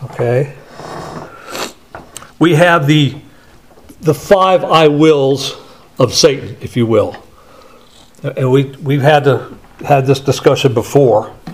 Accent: American